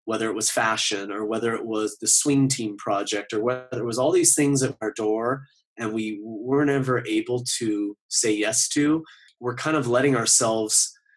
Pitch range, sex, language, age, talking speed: 110-130 Hz, male, English, 30-49, 195 wpm